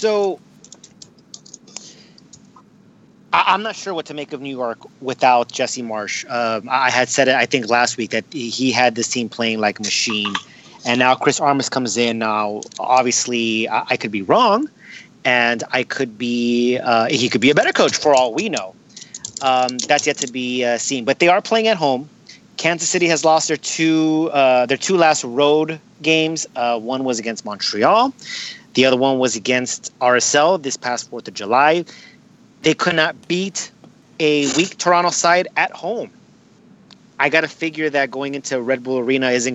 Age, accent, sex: 30-49, American, male